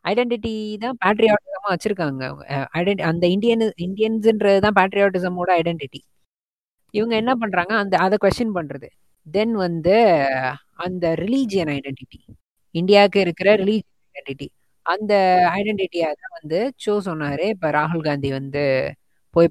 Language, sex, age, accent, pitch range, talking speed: Tamil, female, 20-39, native, 145-200 Hz, 105 wpm